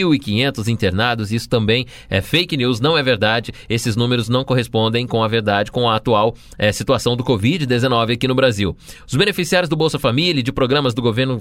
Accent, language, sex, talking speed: Brazilian, Portuguese, male, 200 wpm